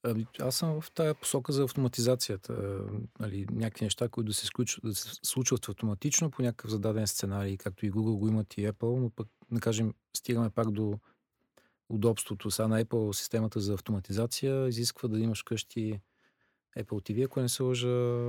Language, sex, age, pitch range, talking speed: Bulgarian, male, 40-59, 105-120 Hz, 160 wpm